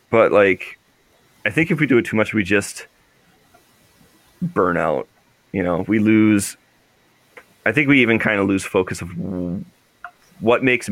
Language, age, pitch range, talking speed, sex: English, 30-49, 90-120 Hz, 160 wpm, male